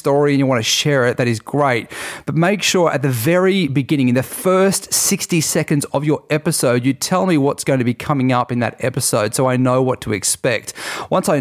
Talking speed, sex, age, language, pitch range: 235 wpm, male, 40-59, English, 120-150 Hz